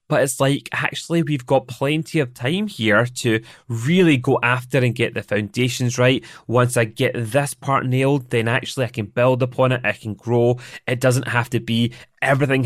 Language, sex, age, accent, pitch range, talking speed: English, male, 30-49, British, 115-140 Hz, 195 wpm